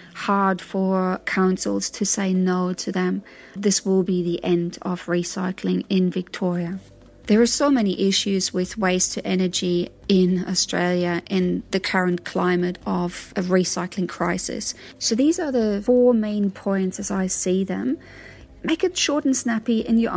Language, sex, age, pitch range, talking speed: English, female, 30-49, 185-225 Hz, 160 wpm